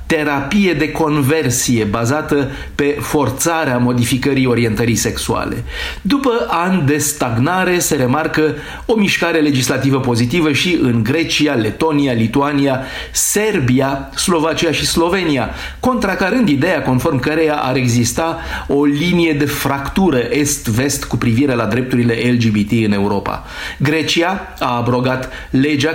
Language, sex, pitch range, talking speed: Romanian, male, 125-155 Hz, 115 wpm